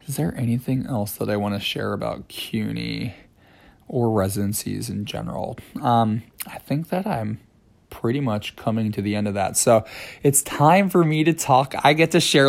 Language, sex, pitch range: English, male, 110-140 Hz